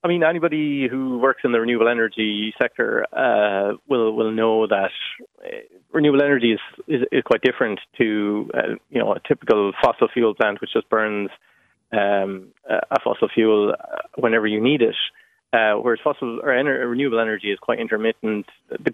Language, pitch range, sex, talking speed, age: English, 105-125 Hz, male, 170 wpm, 20-39